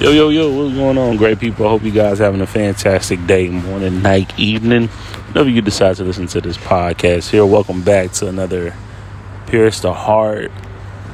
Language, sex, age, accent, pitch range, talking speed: English, male, 30-49, American, 95-110 Hz, 195 wpm